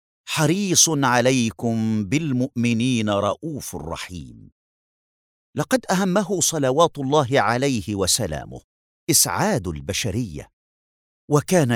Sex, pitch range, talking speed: male, 100-145 Hz, 70 wpm